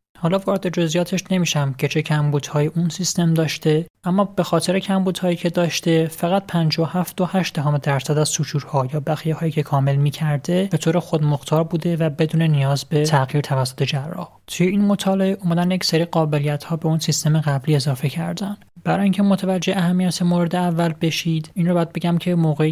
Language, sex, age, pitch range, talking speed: Persian, male, 30-49, 145-175 Hz, 190 wpm